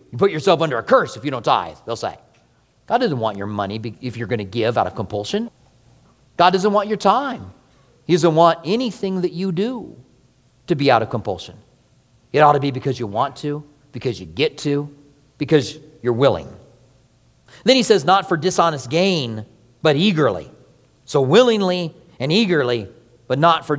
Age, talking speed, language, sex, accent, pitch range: 40-59, 185 wpm, English, male, American, 120-160 Hz